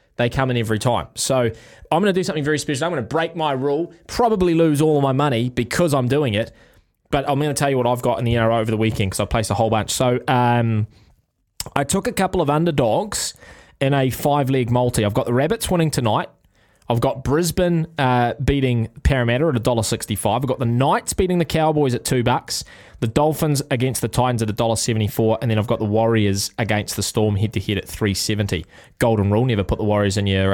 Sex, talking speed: male, 230 wpm